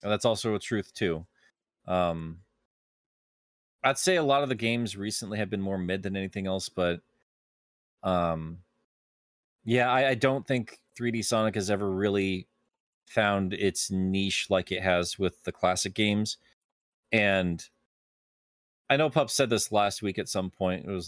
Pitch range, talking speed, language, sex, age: 95-120 Hz, 160 wpm, English, male, 20-39